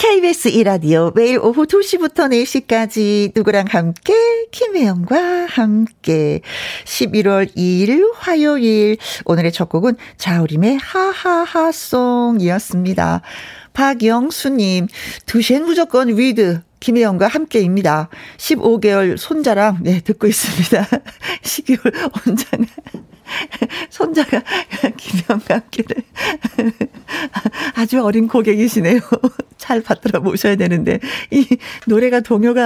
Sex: female